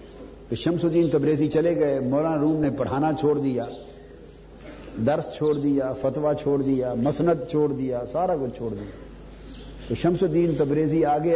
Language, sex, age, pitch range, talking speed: Urdu, male, 50-69, 125-155 Hz, 160 wpm